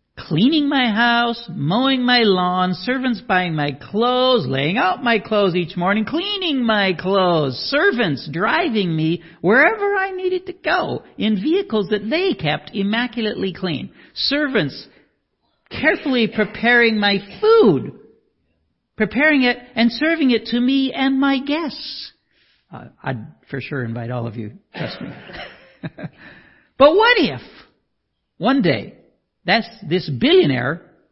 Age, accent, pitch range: 50-69, American, 165-260 Hz